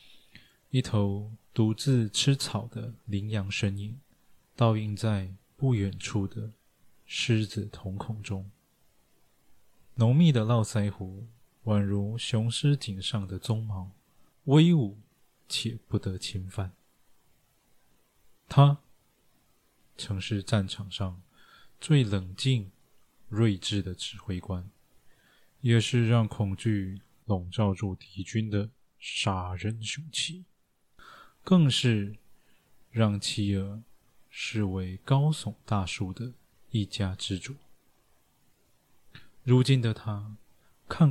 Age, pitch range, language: 20-39, 100-120 Hz, Chinese